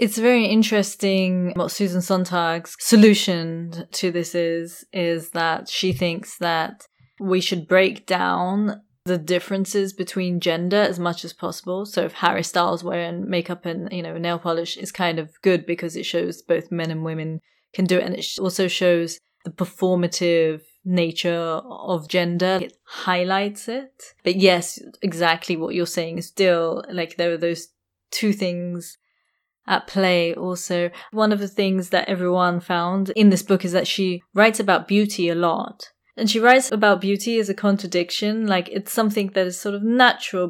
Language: English